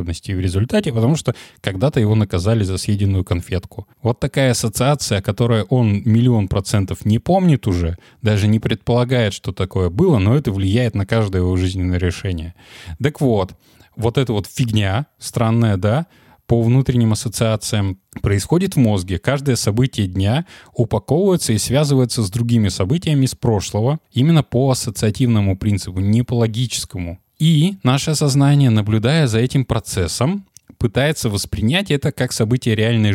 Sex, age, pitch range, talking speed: male, 20-39, 100-130 Hz, 145 wpm